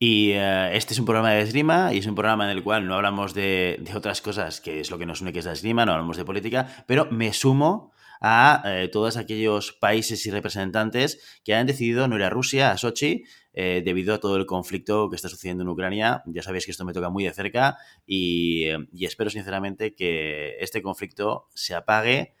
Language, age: Spanish, 30-49